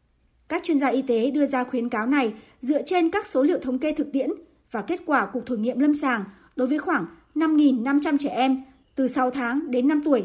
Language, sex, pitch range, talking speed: Vietnamese, male, 250-315 Hz, 230 wpm